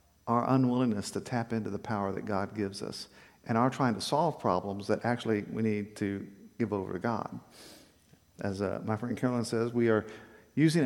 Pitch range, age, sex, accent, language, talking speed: 105-140 Hz, 50-69, male, American, English, 195 wpm